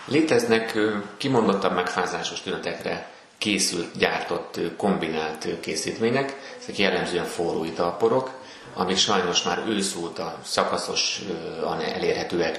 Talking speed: 90 wpm